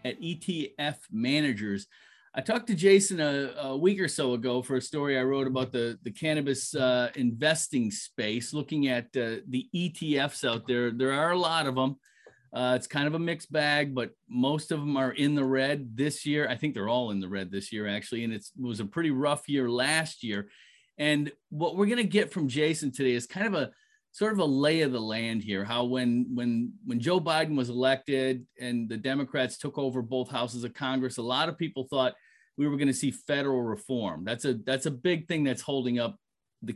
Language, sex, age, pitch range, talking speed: English, male, 40-59, 120-150 Hz, 220 wpm